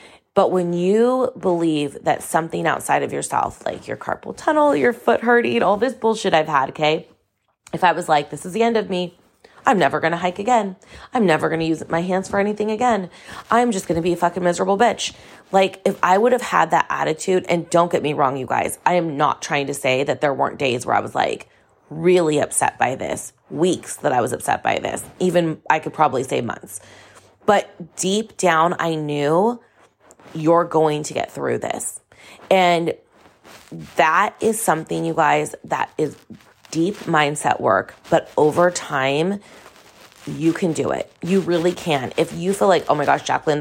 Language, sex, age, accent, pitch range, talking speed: English, female, 20-39, American, 145-190 Hz, 195 wpm